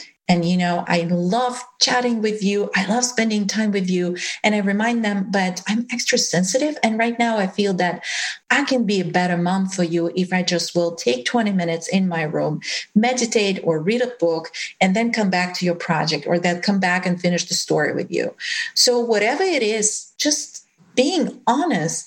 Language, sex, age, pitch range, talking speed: English, female, 40-59, 180-245 Hz, 205 wpm